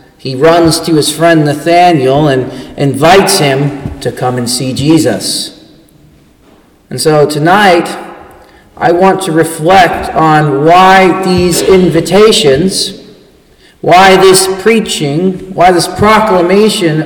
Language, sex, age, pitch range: English, male, 40-59, 160-195 Hz